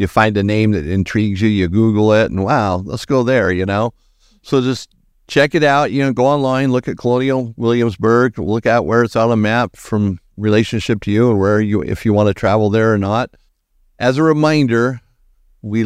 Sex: male